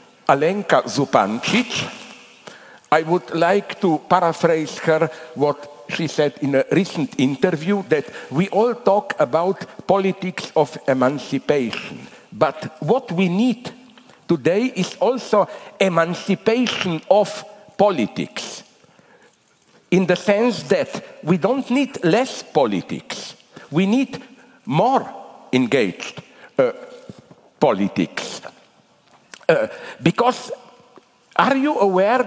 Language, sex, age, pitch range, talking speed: English, male, 60-79, 150-205 Hz, 100 wpm